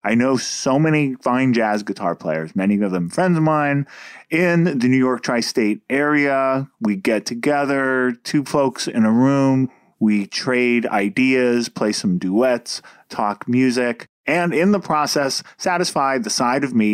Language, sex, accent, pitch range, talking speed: English, male, American, 105-145 Hz, 160 wpm